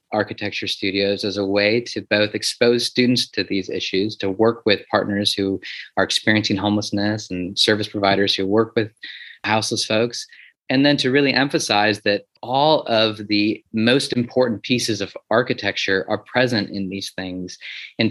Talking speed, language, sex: 160 wpm, English, male